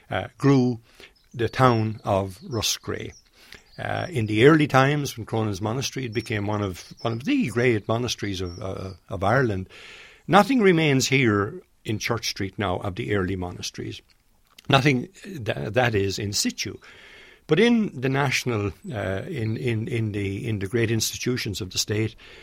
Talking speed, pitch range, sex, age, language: 160 wpm, 95-125 Hz, male, 60-79, English